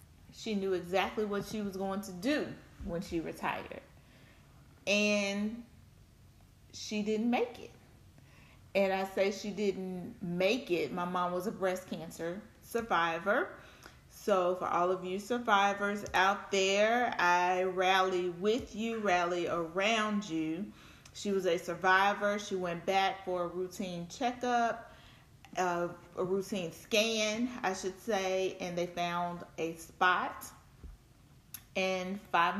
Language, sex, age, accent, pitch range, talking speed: English, female, 30-49, American, 180-210 Hz, 130 wpm